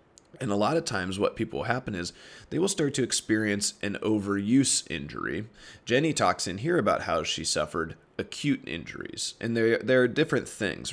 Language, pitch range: English, 95-120 Hz